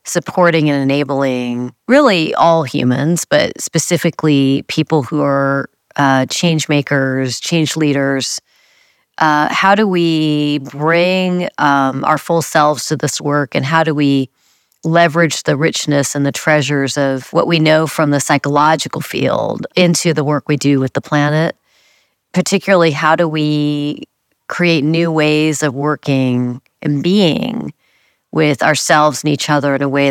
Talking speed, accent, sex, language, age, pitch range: 145 wpm, American, female, English, 40-59, 145-165 Hz